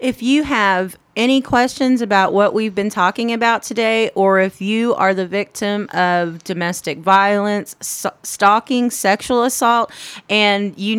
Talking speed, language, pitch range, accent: 140 wpm, English, 175-215 Hz, American